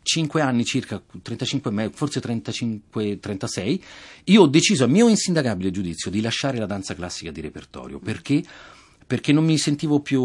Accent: native